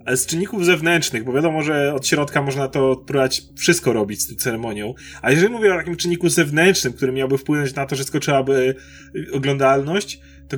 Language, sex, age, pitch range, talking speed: Polish, male, 30-49, 135-175 Hz, 175 wpm